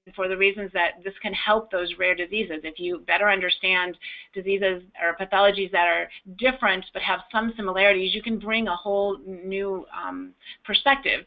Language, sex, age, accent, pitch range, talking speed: English, female, 30-49, American, 185-230 Hz, 170 wpm